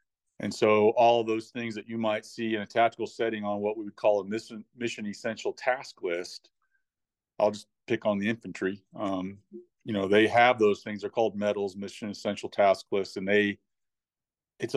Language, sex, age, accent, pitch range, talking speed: English, male, 40-59, American, 105-120 Hz, 195 wpm